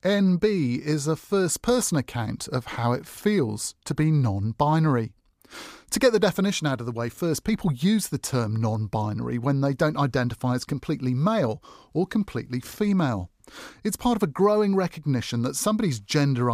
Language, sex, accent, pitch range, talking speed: English, male, British, 120-175 Hz, 165 wpm